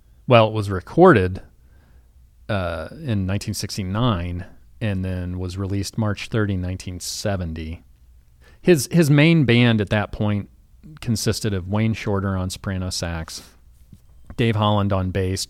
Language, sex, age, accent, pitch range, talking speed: English, male, 40-59, American, 85-110 Hz, 125 wpm